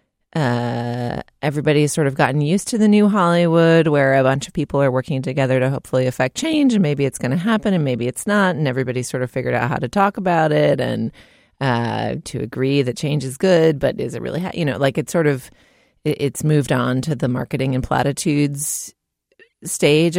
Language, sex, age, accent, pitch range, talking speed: English, female, 30-49, American, 125-175 Hz, 210 wpm